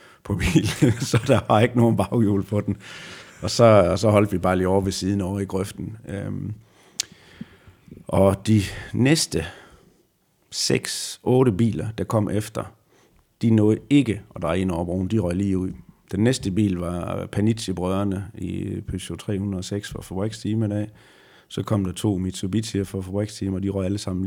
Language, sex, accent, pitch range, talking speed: Danish, male, native, 95-110 Hz, 175 wpm